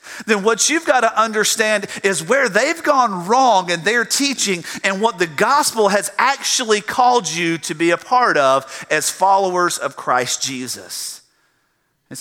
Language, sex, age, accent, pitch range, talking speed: English, male, 40-59, American, 175-245 Hz, 160 wpm